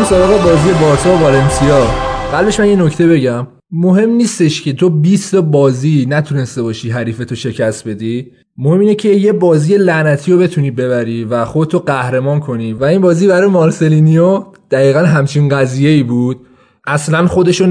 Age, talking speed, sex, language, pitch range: 20-39, 145 wpm, male, Persian, 140-180 Hz